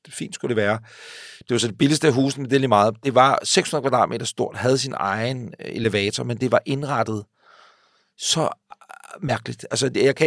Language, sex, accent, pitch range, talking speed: Danish, male, native, 120-180 Hz, 205 wpm